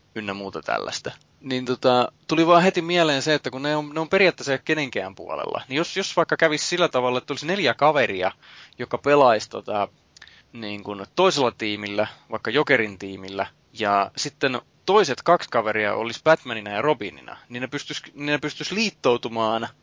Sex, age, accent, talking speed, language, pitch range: male, 20-39, native, 160 wpm, Finnish, 110-150 Hz